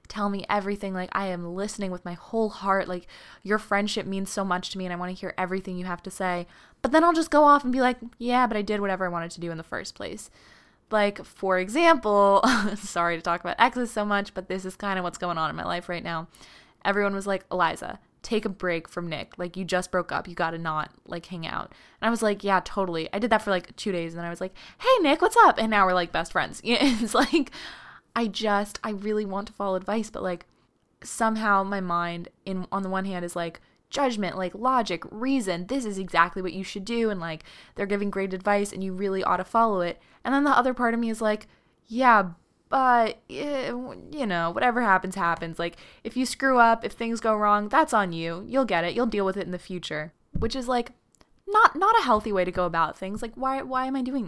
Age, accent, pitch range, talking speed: 20-39, American, 180-235 Hz, 250 wpm